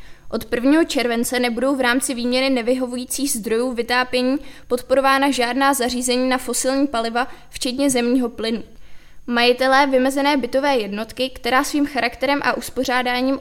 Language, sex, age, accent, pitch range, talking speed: Czech, female, 20-39, native, 240-265 Hz, 125 wpm